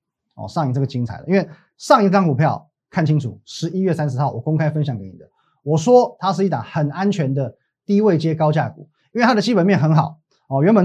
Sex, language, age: male, Chinese, 30-49